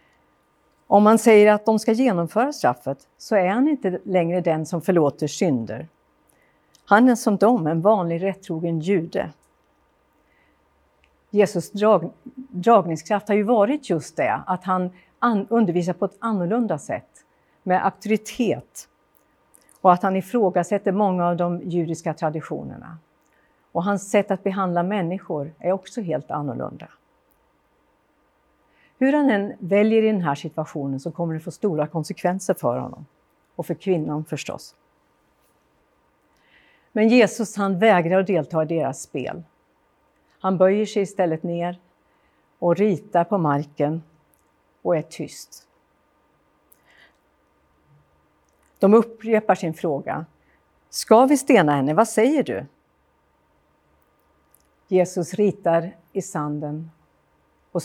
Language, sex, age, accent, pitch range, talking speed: Swedish, female, 50-69, native, 165-210 Hz, 120 wpm